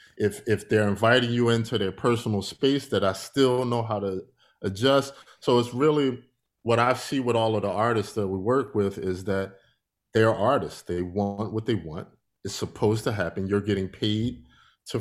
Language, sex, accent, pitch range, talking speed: English, male, American, 100-125 Hz, 190 wpm